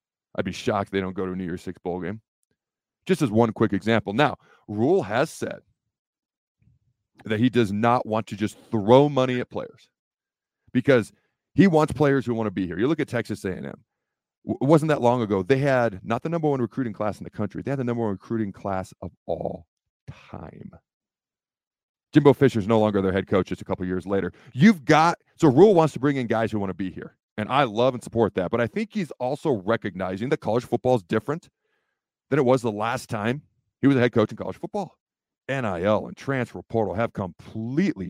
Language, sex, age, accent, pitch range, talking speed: English, male, 40-59, American, 105-130 Hz, 215 wpm